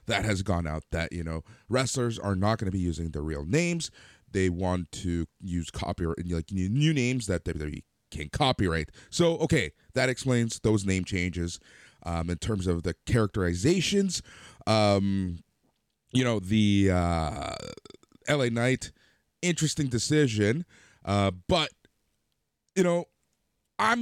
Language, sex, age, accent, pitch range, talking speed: English, male, 30-49, American, 90-130 Hz, 140 wpm